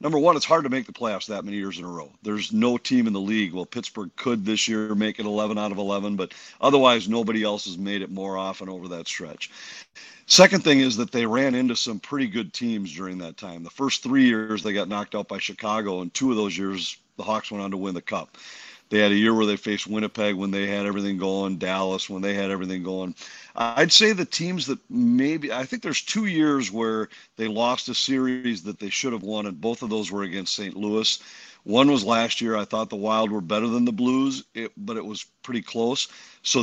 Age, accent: 50-69, American